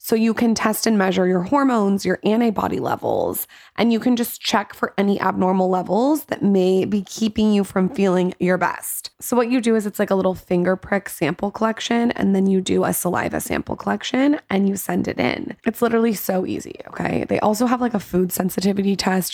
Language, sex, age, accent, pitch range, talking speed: English, female, 20-39, American, 185-225 Hz, 210 wpm